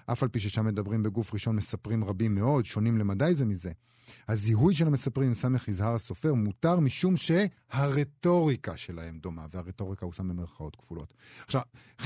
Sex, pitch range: male, 115-155 Hz